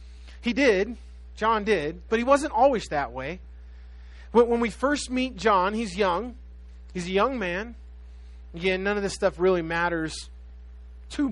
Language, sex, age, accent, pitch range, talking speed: English, male, 30-49, American, 165-205 Hz, 155 wpm